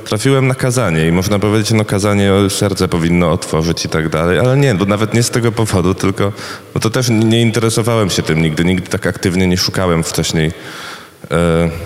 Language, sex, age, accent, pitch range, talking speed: Polish, male, 20-39, native, 100-135 Hz, 185 wpm